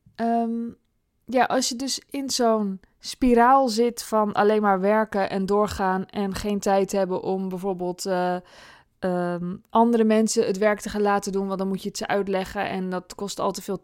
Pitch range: 185-225 Hz